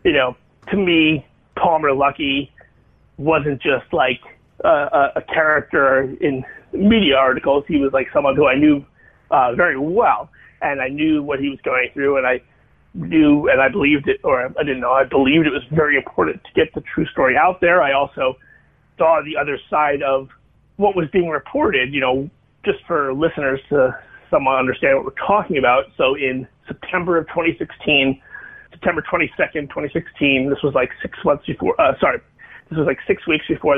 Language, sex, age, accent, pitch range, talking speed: English, male, 30-49, American, 140-170 Hz, 185 wpm